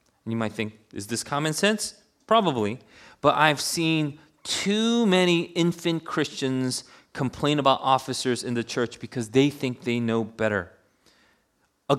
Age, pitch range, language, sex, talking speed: 30-49, 125-175 Hz, English, male, 140 wpm